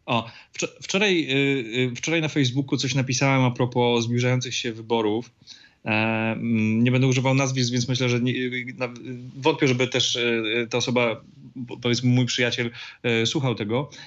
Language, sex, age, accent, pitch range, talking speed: Polish, male, 30-49, native, 125-150 Hz, 125 wpm